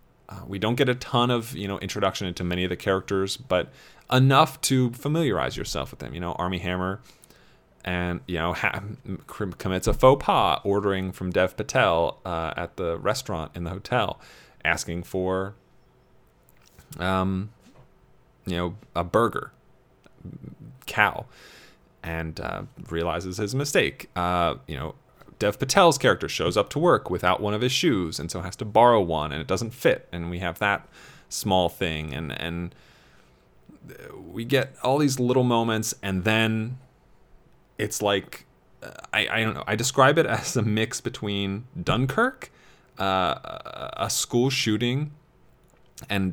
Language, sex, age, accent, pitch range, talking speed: English, male, 30-49, American, 90-120 Hz, 155 wpm